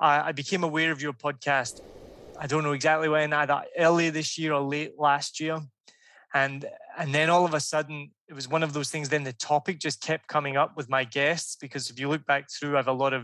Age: 20-39